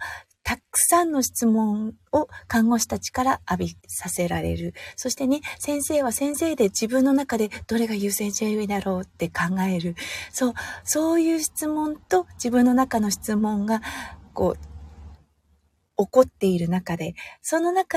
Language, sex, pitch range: Japanese, female, 180-275 Hz